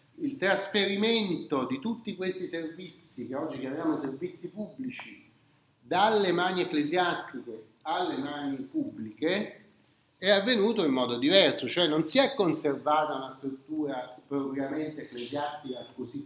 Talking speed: 120 wpm